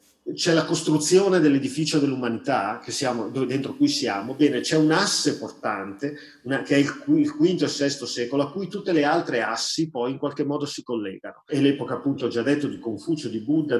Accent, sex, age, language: native, male, 40-59, Italian